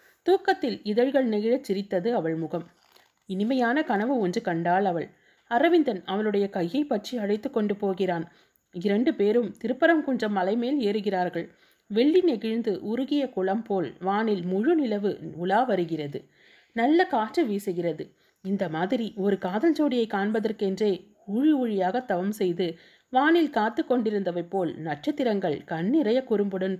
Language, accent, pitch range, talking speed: Tamil, native, 185-250 Hz, 120 wpm